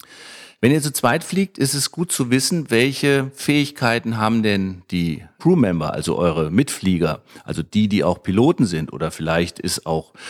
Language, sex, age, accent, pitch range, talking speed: German, male, 50-69, German, 95-115 Hz, 170 wpm